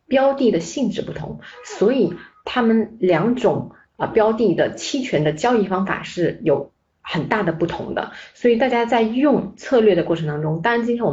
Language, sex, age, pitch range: Chinese, female, 30-49, 175-240 Hz